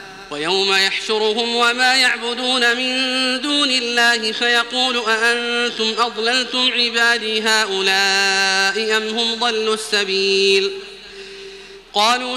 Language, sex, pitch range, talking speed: Arabic, male, 215-250 Hz, 80 wpm